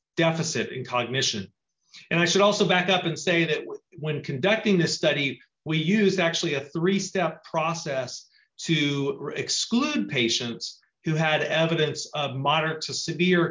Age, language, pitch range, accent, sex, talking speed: 40-59, English, 135-175 Hz, American, male, 145 wpm